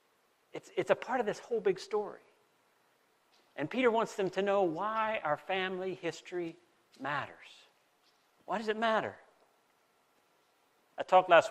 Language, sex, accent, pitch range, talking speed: English, male, American, 145-195 Hz, 140 wpm